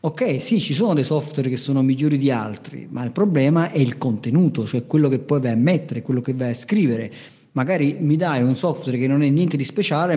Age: 40-59